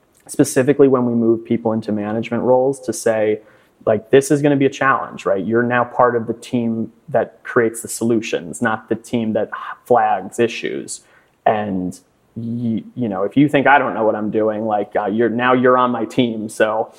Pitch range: 110-130 Hz